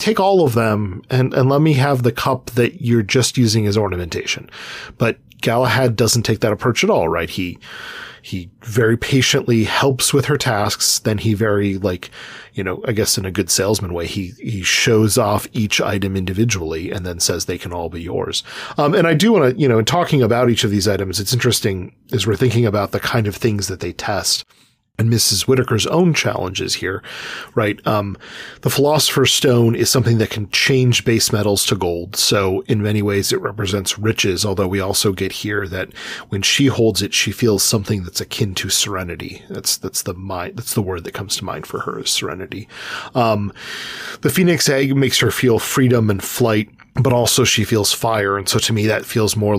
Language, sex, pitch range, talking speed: English, male, 100-130 Hz, 205 wpm